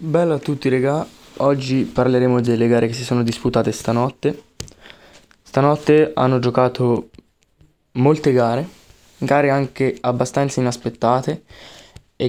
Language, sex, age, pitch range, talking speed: Italian, male, 20-39, 115-130 Hz, 110 wpm